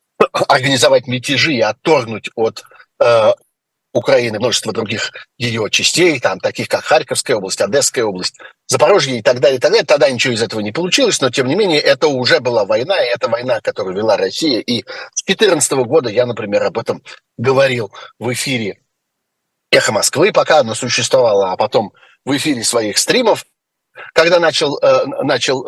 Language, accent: Russian, native